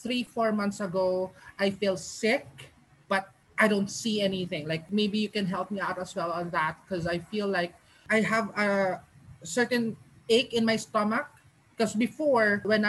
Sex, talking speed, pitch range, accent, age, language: male, 175 wpm, 185-220 Hz, Filipino, 20-39, English